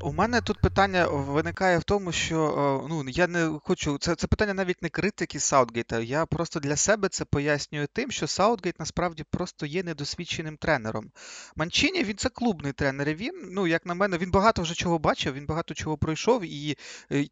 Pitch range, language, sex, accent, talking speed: 150-185 Hz, Ukrainian, male, native, 190 wpm